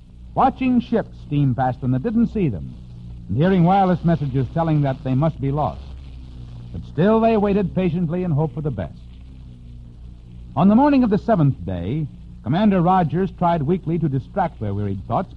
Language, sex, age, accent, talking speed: English, male, 60-79, American, 175 wpm